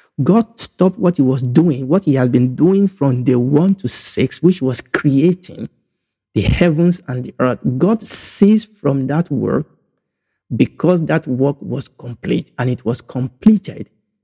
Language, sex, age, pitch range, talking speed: English, male, 50-69, 125-165 Hz, 160 wpm